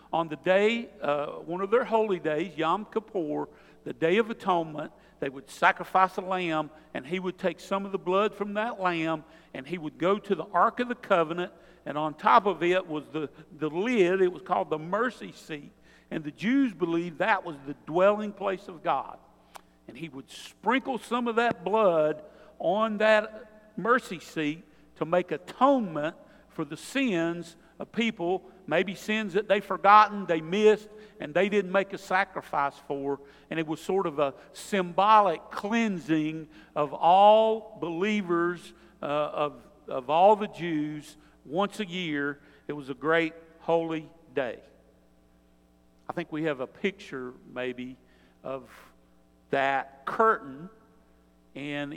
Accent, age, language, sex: American, 50-69, English, male